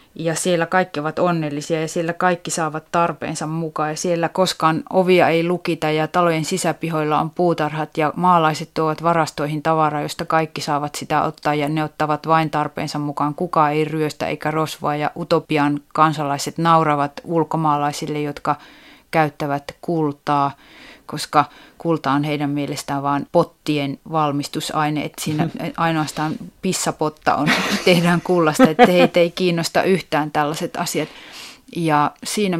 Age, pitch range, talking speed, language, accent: 30-49, 150-170 Hz, 135 wpm, Finnish, native